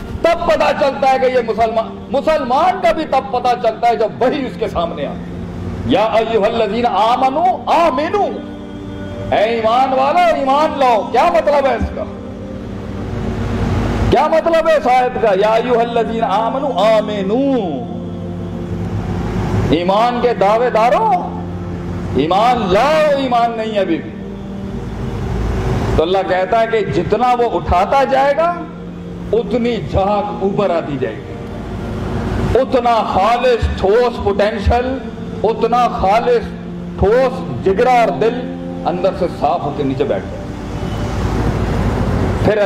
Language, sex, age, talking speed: Urdu, male, 50-69, 120 wpm